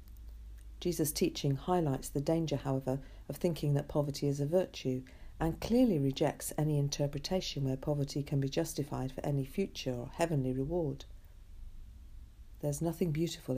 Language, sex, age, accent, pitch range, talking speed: English, female, 50-69, British, 125-160 Hz, 140 wpm